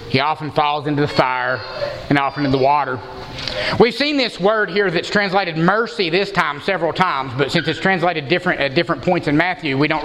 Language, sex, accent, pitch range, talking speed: English, male, American, 155-215 Hz, 210 wpm